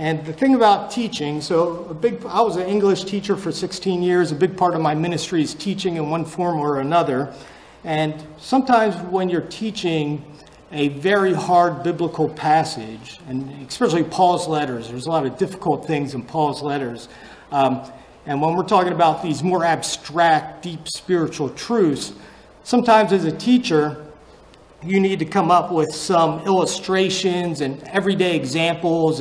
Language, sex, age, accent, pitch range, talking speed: English, male, 40-59, American, 150-190 Hz, 160 wpm